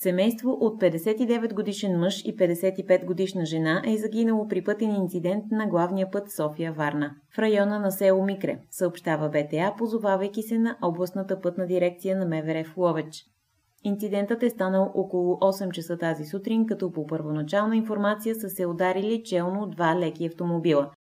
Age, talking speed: 20-39, 145 wpm